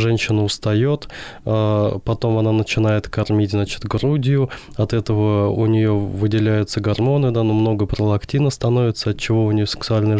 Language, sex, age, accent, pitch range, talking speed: Russian, male, 20-39, native, 105-120 Hz, 145 wpm